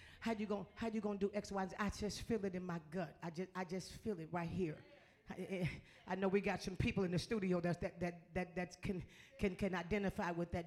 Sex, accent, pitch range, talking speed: female, American, 190-290 Hz, 265 wpm